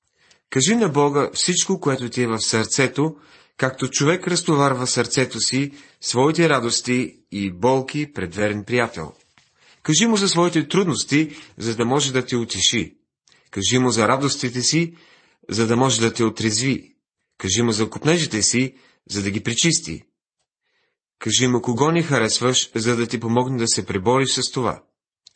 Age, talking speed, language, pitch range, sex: 30-49, 155 wpm, Bulgarian, 115-150 Hz, male